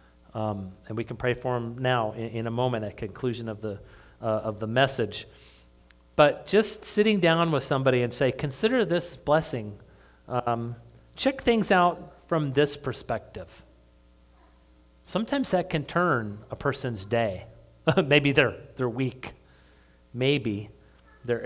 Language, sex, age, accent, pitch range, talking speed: English, male, 40-59, American, 115-175 Hz, 145 wpm